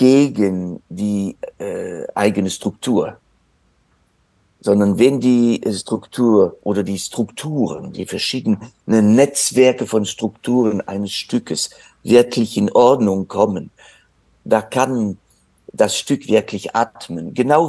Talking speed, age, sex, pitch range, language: 100 wpm, 50-69, male, 100-125 Hz, German